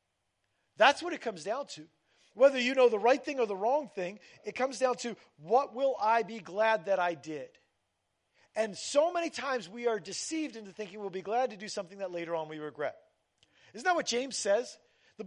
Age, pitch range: 40-59, 190-265 Hz